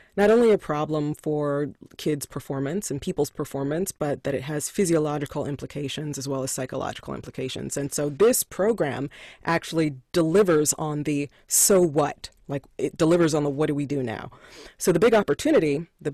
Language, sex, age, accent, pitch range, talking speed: English, female, 30-49, American, 145-165 Hz, 170 wpm